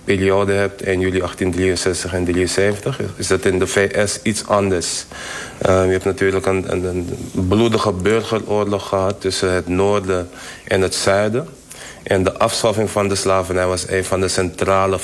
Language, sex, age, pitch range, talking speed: Dutch, male, 20-39, 90-100 Hz, 165 wpm